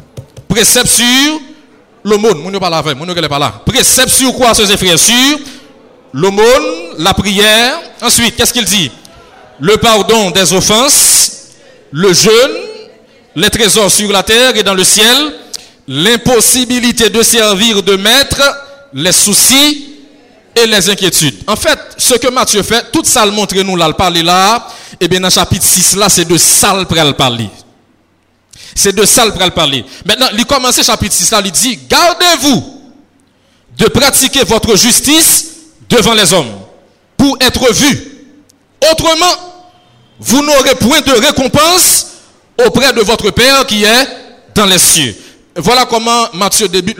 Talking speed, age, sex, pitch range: 145 wpm, 50-69, male, 195-255 Hz